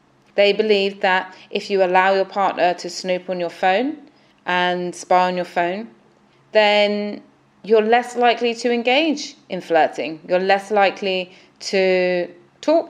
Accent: British